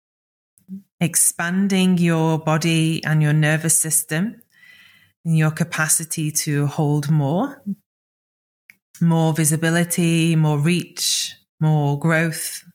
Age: 20-39